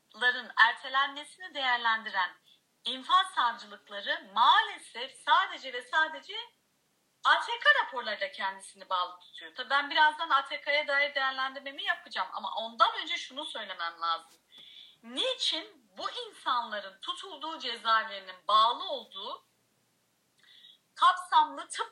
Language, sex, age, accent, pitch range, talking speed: Turkish, female, 40-59, native, 230-330 Hz, 100 wpm